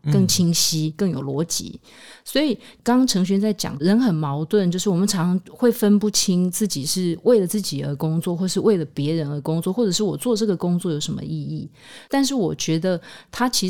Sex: female